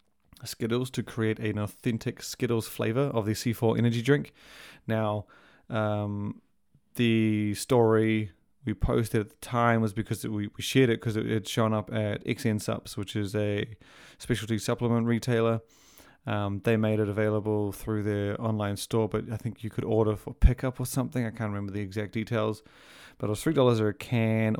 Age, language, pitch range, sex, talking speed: 30-49, English, 105-115 Hz, male, 180 wpm